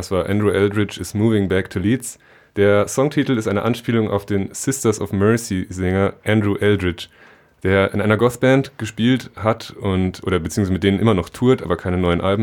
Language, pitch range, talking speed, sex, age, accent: German, 95-110 Hz, 190 wpm, male, 20-39, German